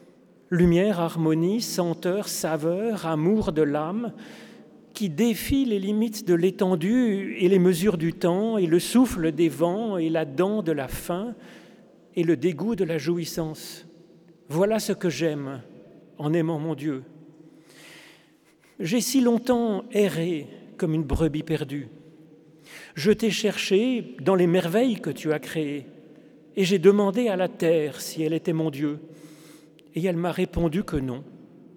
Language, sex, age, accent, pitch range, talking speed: French, male, 40-59, French, 160-220 Hz, 145 wpm